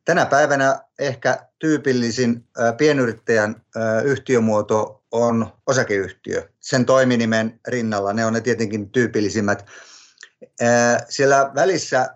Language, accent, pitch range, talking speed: Finnish, native, 110-125 Hz, 90 wpm